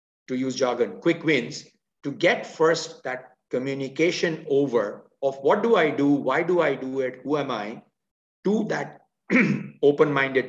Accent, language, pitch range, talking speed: Indian, English, 130-160 Hz, 155 wpm